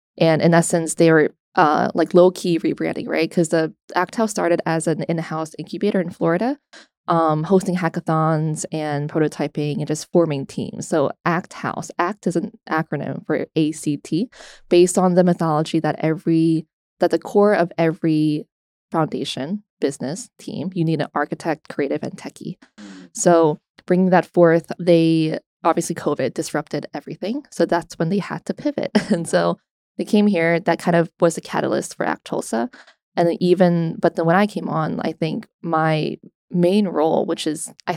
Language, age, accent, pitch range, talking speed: English, 20-39, American, 160-180 Hz, 170 wpm